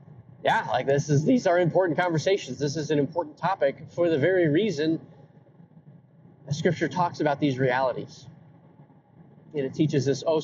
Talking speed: 160 wpm